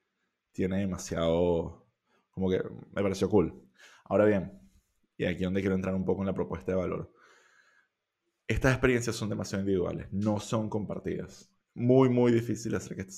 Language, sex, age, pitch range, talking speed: Spanish, male, 20-39, 95-115 Hz, 165 wpm